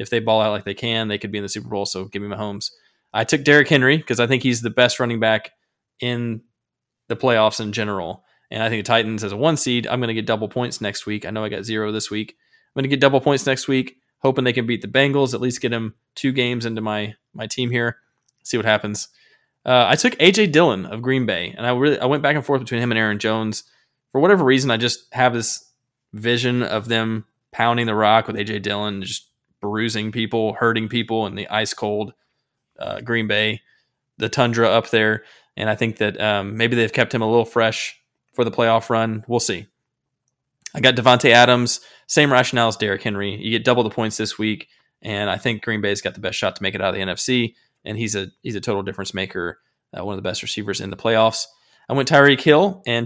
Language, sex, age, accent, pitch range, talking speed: English, male, 20-39, American, 110-125 Hz, 240 wpm